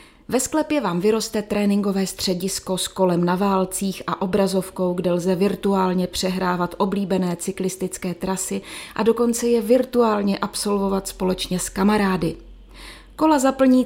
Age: 30-49